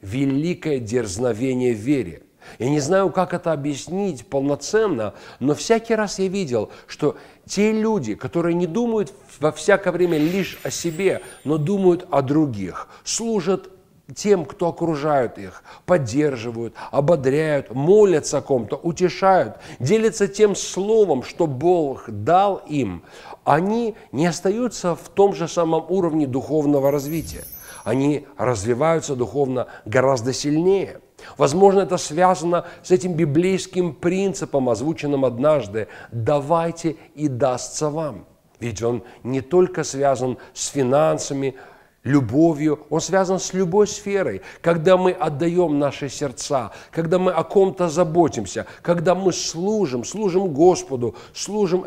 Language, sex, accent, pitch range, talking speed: Russian, male, native, 140-185 Hz, 125 wpm